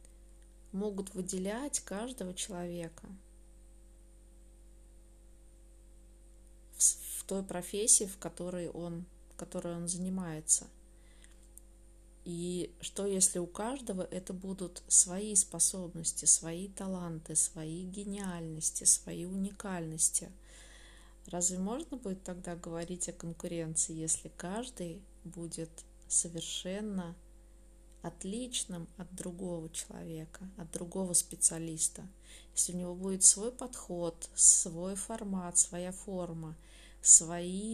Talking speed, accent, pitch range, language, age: 90 wpm, native, 170-195 Hz, Russian, 20-39